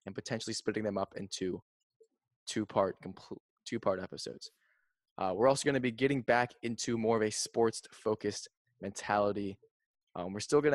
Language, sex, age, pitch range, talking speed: English, male, 20-39, 110-125 Hz, 165 wpm